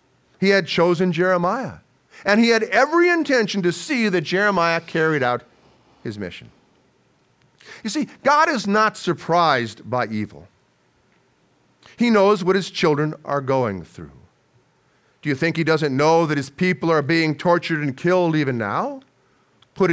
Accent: American